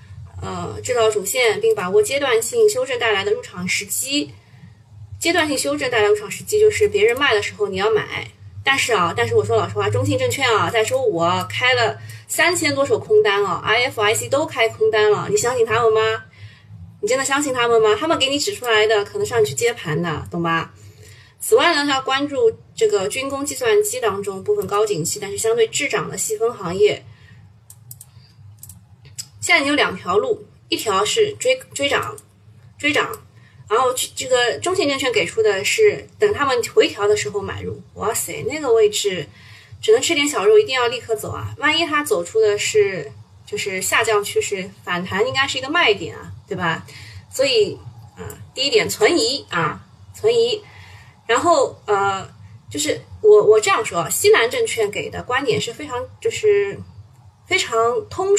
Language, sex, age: Chinese, female, 20-39